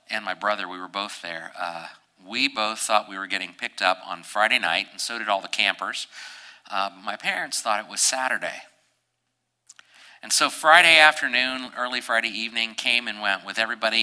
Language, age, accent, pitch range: English, 50-69, American, 100-125 Hz